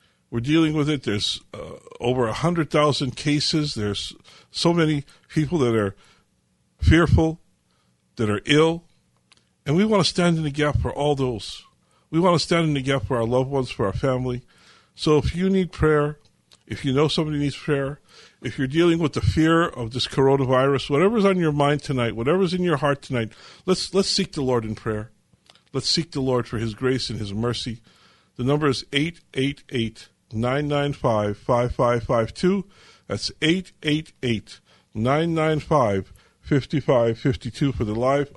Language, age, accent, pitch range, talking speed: English, 50-69, American, 120-160 Hz, 170 wpm